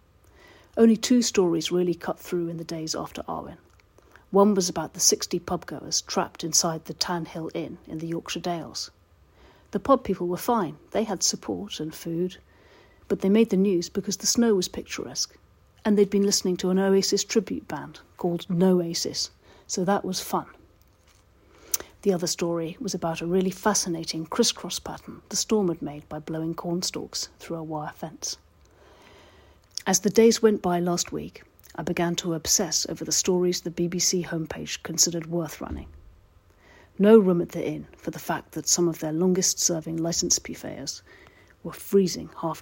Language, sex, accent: English, female, British